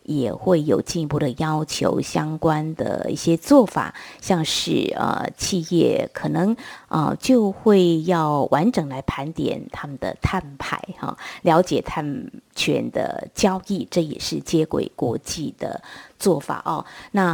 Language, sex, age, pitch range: Chinese, female, 30-49, 155-210 Hz